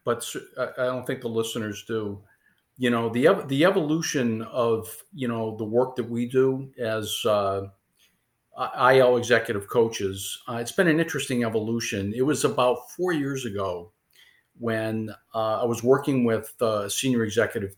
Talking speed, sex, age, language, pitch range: 160 wpm, male, 50-69, English, 105-130 Hz